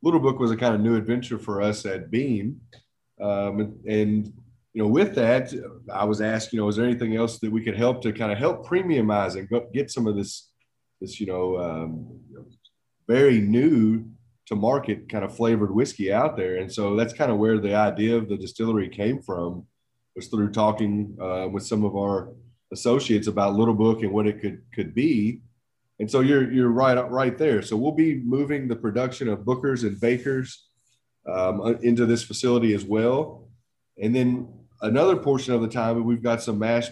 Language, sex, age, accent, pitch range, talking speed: English, male, 30-49, American, 105-120 Hz, 195 wpm